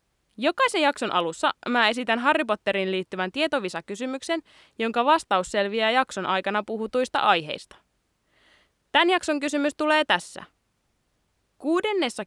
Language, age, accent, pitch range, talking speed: Finnish, 20-39, native, 190-290 Hz, 110 wpm